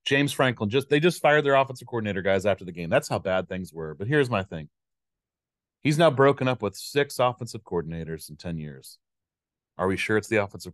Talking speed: 220 wpm